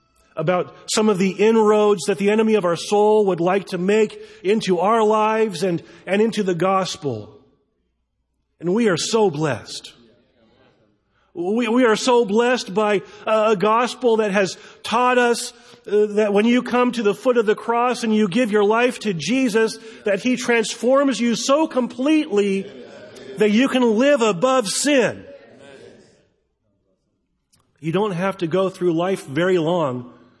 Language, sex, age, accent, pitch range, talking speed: English, male, 40-59, American, 170-230 Hz, 155 wpm